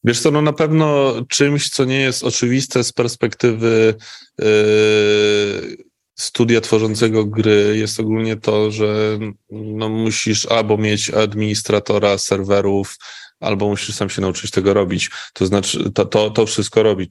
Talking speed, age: 140 wpm, 20-39